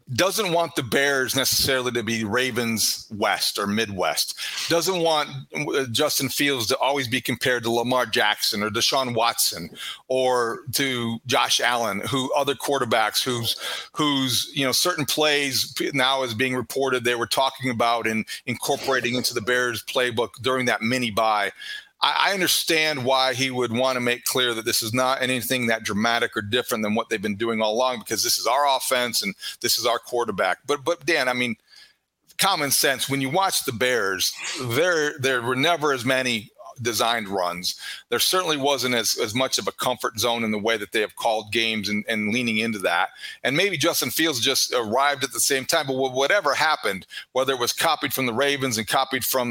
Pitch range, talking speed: 115-140 Hz, 190 wpm